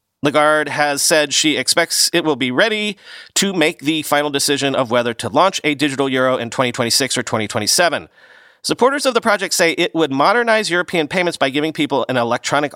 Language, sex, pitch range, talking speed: English, male, 130-180 Hz, 190 wpm